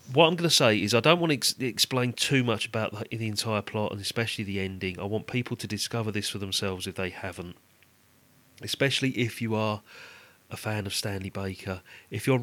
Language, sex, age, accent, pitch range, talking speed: English, male, 40-59, British, 100-130 Hz, 210 wpm